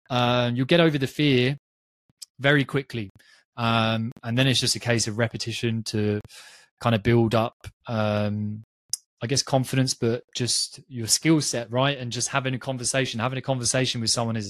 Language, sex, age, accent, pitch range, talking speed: English, male, 20-39, British, 115-135 Hz, 180 wpm